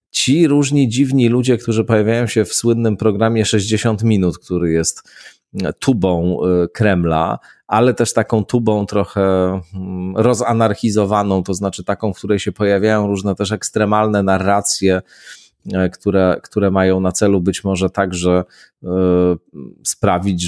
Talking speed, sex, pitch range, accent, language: 125 wpm, male, 90-105 Hz, native, Polish